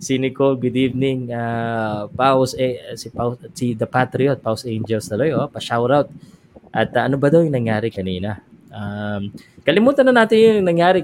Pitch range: 115-145 Hz